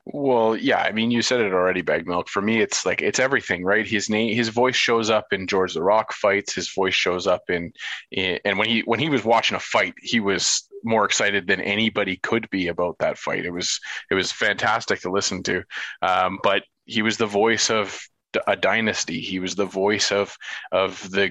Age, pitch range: 20-39, 100-130 Hz